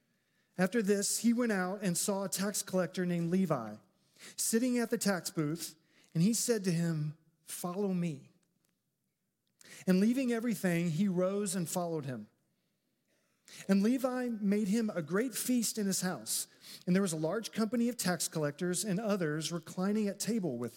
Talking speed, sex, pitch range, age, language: 165 wpm, male, 165-220 Hz, 40-59, English